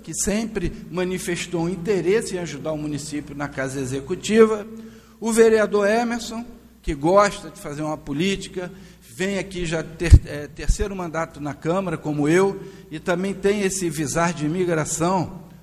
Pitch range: 170-220 Hz